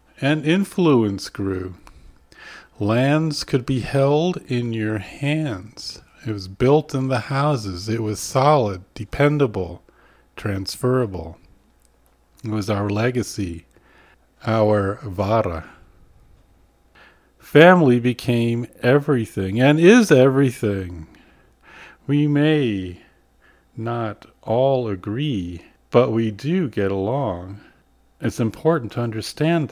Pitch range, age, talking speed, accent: 100-140 Hz, 50-69, 95 wpm, American